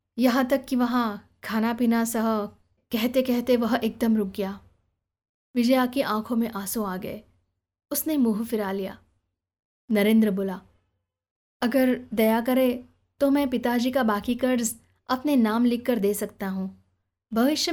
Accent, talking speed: native, 140 wpm